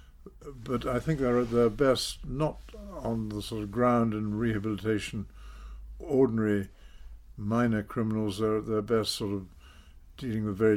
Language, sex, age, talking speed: English, male, 60-79, 150 wpm